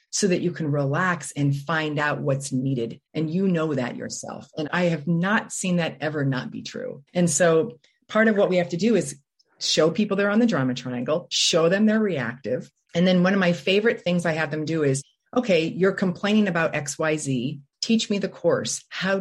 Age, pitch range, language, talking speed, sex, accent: 40-59, 140-200 Hz, English, 220 wpm, female, American